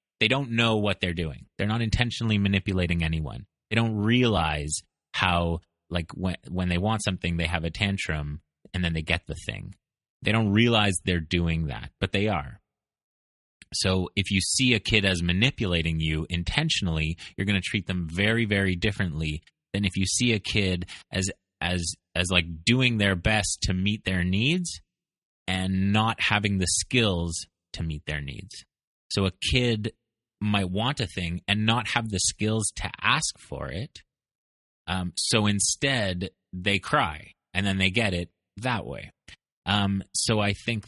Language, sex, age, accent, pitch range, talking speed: English, male, 30-49, American, 85-110 Hz, 170 wpm